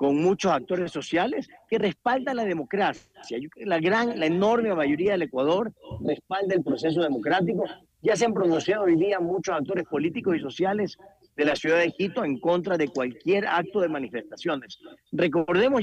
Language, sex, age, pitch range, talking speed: Spanish, male, 40-59, 165-225 Hz, 165 wpm